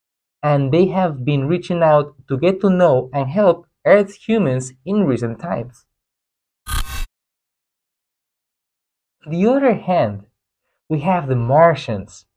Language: English